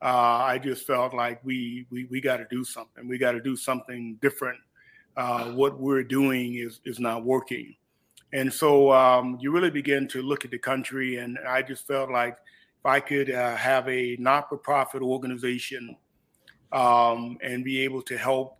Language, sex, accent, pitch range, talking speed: English, male, American, 125-135 Hz, 180 wpm